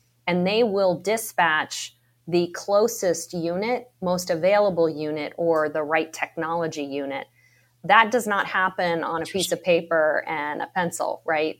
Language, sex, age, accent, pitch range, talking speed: English, female, 30-49, American, 155-180 Hz, 145 wpm